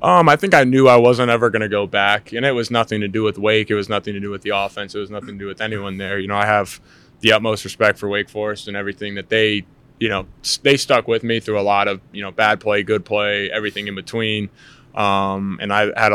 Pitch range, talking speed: 100-110 Hz, 270 wpm